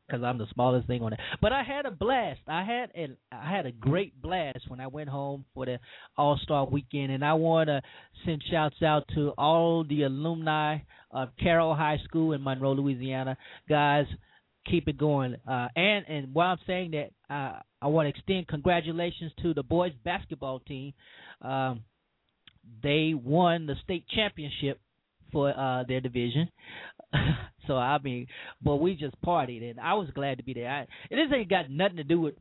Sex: male